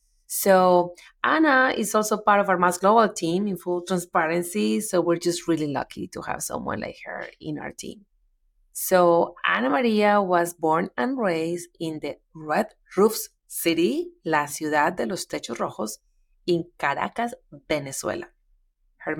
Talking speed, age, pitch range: 150 wpm, 30-49, 165-220 Hz